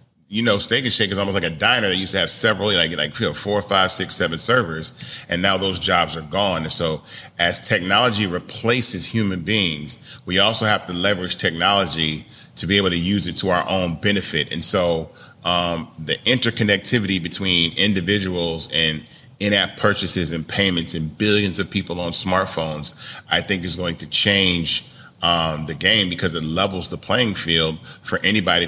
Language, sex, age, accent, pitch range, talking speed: English, male, 30-49, American, 85-100 Hz, 180 wpm